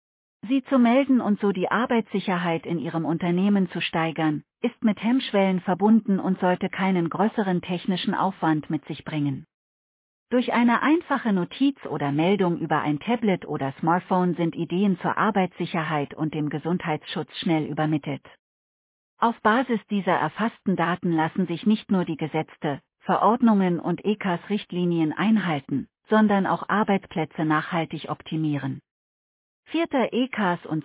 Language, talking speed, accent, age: German, 130 wpm, German, 40-59